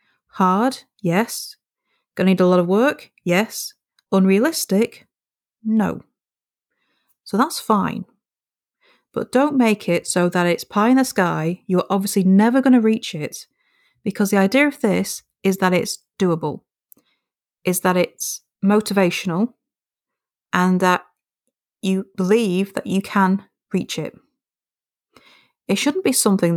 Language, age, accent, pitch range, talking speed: English, 30-49, British, 180-230 Hz, 135 wpm